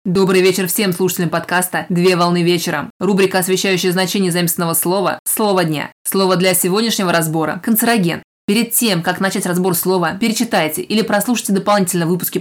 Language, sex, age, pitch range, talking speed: Russian, female, 20-39, 175-200 Hz, 150 wpm